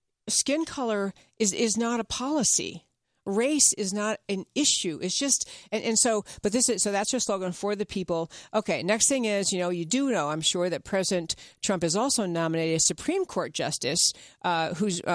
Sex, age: female, 50-69